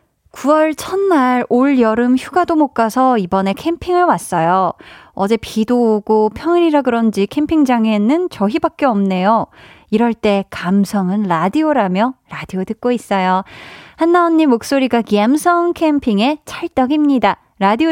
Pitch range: 210-300 Hz